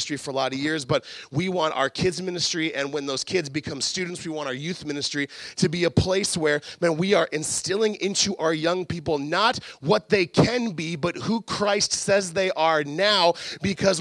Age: 30-49